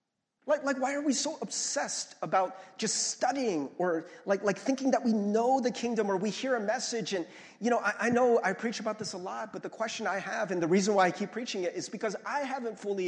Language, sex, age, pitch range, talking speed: English, male, 40-59, 185-255 Hz, 250 wpm